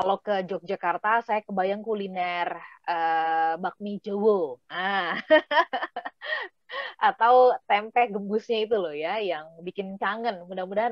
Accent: native